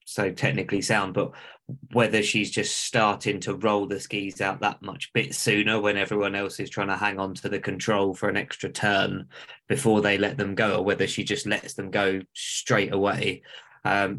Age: 20-39